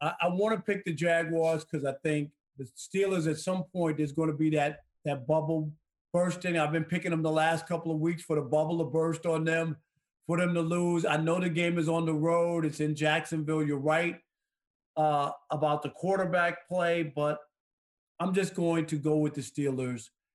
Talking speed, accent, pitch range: 205 wpm, American, 145-175 Hz